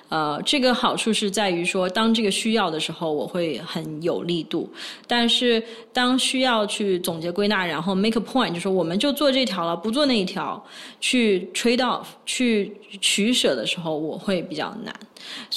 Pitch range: 175-220 Hz